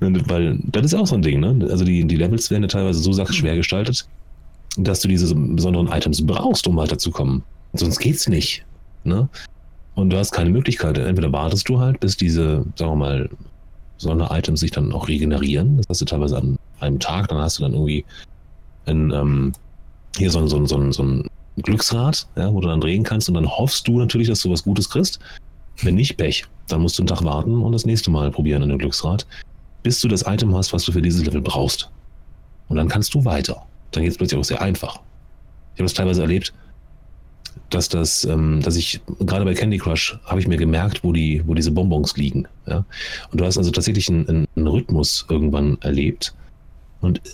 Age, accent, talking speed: 30-49, German, 210 wpm